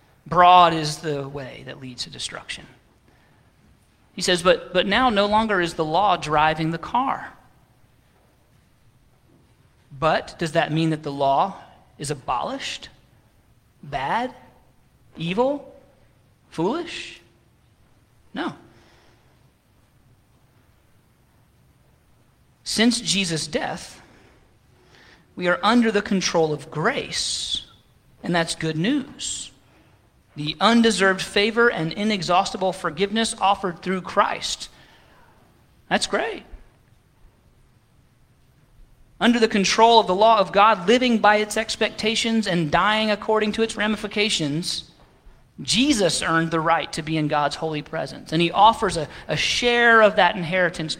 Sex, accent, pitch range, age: male, American, 145-210 Hz, 40-59